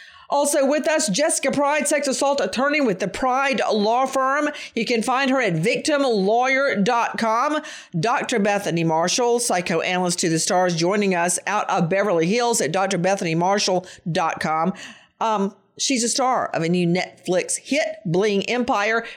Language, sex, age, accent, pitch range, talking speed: English, female, 50-69, American, 185-275 Hz, 140 wpm